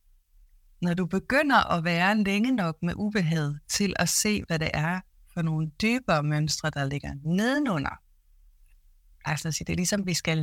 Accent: native